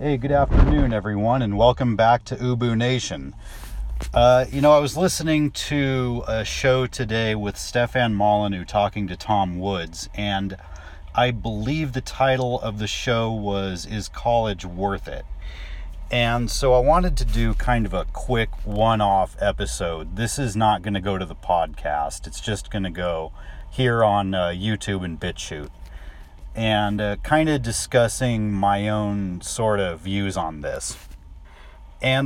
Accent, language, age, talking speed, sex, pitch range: American, English, 40-59, 155 wpm, male, 90-120 Hz